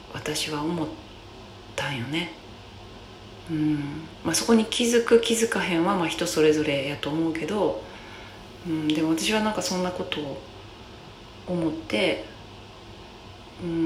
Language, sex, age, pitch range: Japanese, female, 40-59, 105-165 Hz